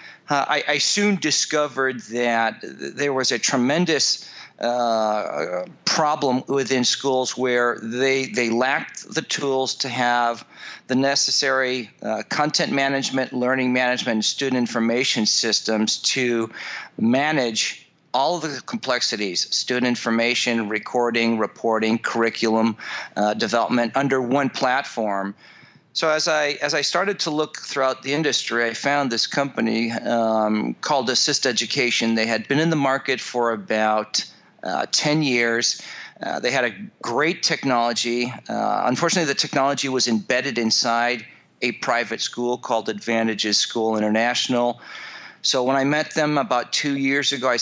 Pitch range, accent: 115-140 Hz, American